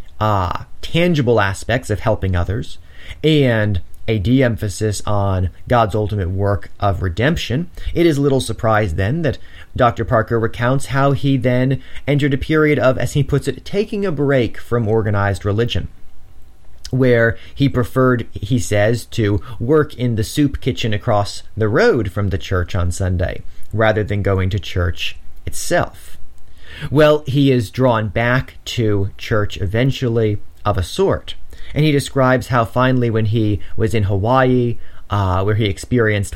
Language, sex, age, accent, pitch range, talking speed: English, male, 30-49, American, 95-125 Hz, 150 wpm